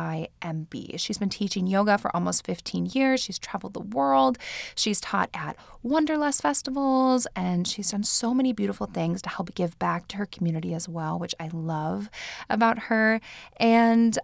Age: 20-39